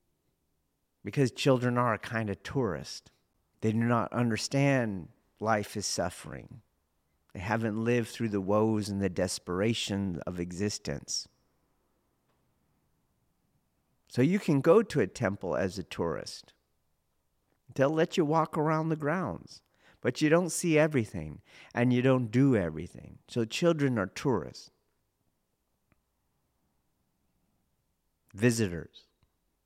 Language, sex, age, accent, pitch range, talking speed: English, male, 50-69, American, 90-125 Hz, 115 wpm